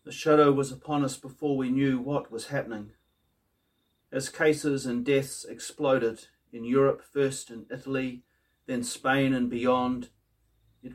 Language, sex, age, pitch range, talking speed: English, male, 40-59, 110-135 Hz, 140 wpm